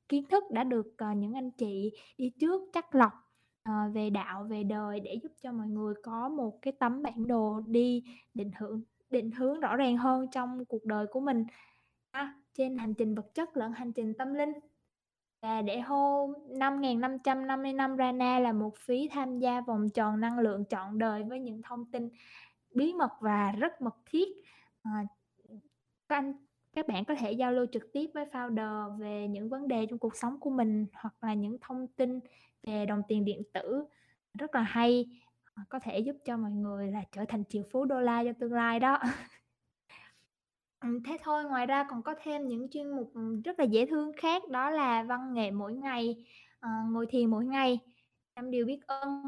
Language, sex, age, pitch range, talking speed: Vietnamese, female, 10-29, 220-270 Hz, 190 wpm